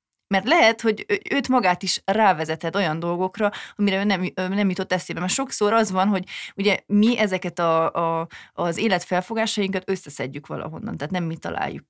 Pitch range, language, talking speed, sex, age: 165-205 Hz, Hungarian, 165 wpm, female, 30-49